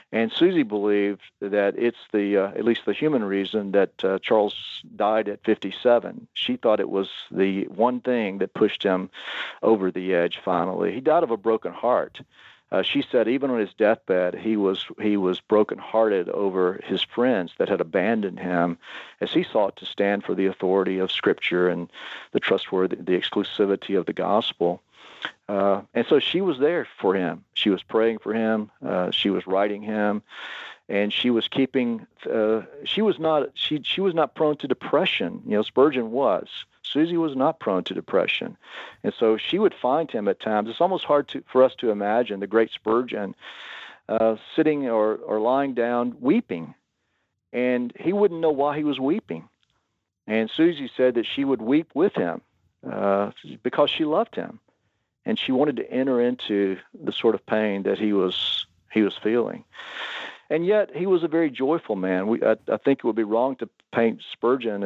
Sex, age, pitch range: male, 50-69, 100-135 Hz